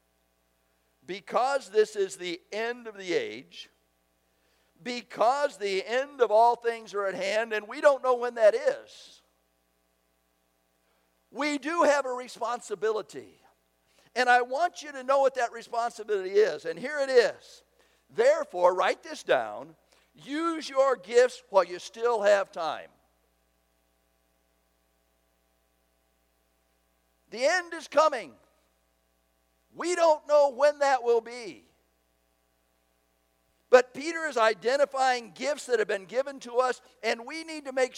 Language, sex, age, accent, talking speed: English, male, 60-79, American, 130 wpm